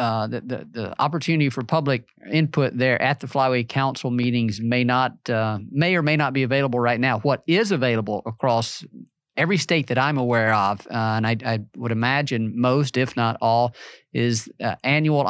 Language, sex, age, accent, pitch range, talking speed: English, male, 40-59, American, 115-140 Hz, 190 wpm